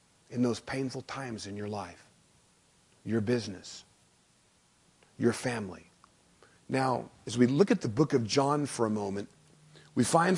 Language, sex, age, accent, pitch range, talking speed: English, male, 40-59, American, 115-170 Hz, 145 wpm